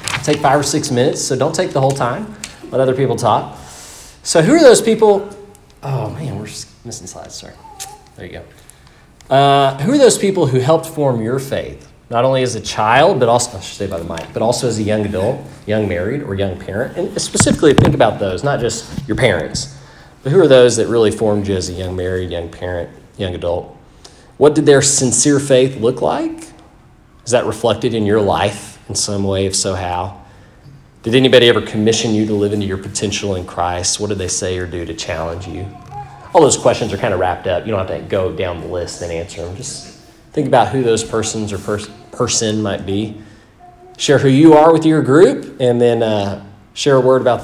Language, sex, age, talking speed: English, male, 30-49, 215 wpm